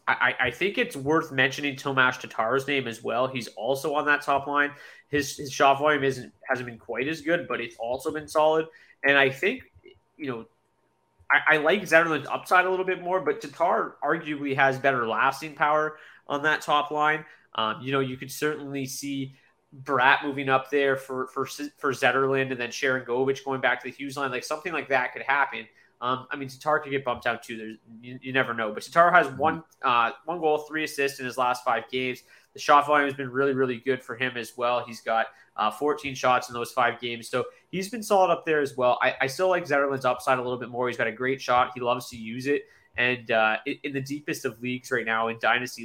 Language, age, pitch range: English, 30-49, 120-145 Hz